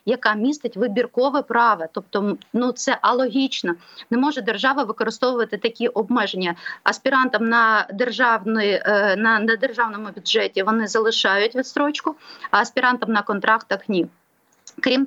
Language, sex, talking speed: Ukrainian, female, 125 wpm